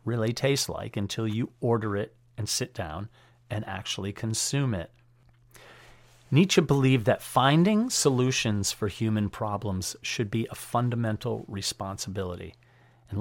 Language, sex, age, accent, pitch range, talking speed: English, male, 40-59, American, 105-135 Hz, 125 wpm